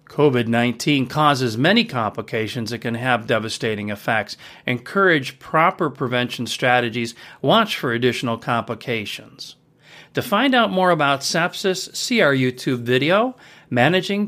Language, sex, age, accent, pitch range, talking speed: English, male, 40-59, American, 120-180 Hz, 120 wpm